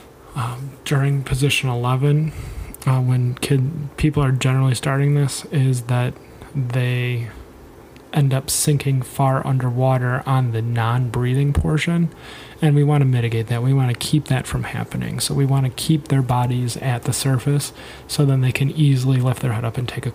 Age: 30-49